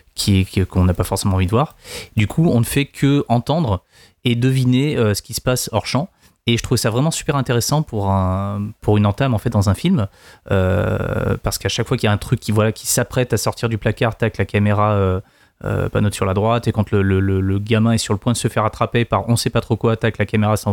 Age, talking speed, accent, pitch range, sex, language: 20-39, 265 wpm, French, 100-125 Hz, male, French